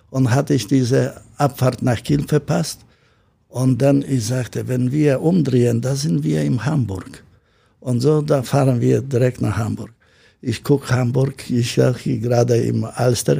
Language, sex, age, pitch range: German, male, 60-79, 115-140 Hz